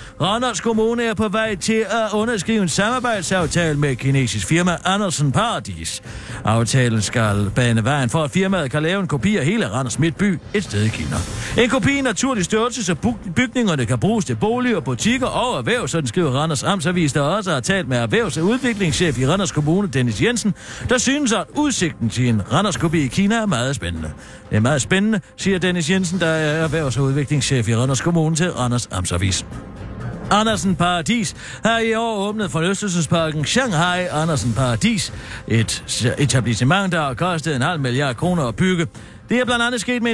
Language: Danish